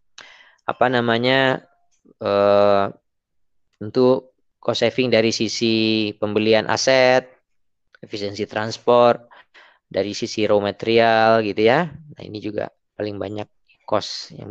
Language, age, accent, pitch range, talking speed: Indonesian, 20-39, native, 100-125 Hz, 105 wpm